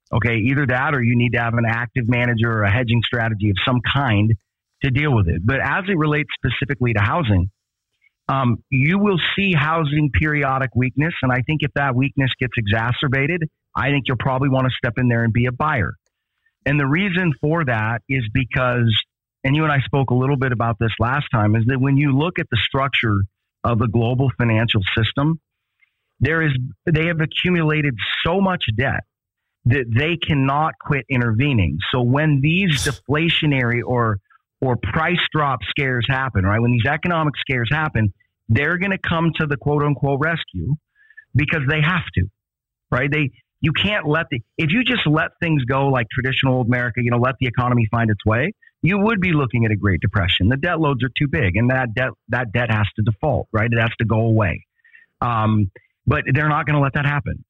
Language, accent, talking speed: English, American, 200 wpm